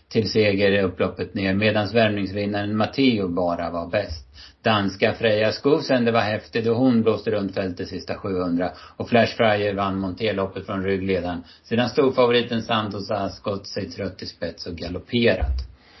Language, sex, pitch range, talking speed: Swedish, male, 100-120 Hz, 160 wpm